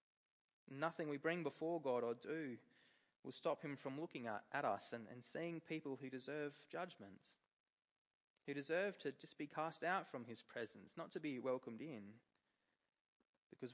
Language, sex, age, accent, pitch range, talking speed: English, male, 20-39, Australian, 130-155 Hz, 165 wpm